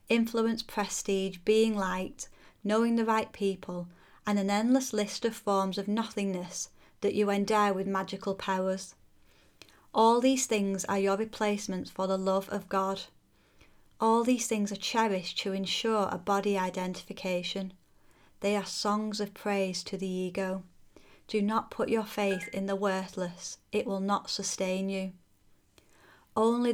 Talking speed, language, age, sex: 145 wpm, English, 30-49, female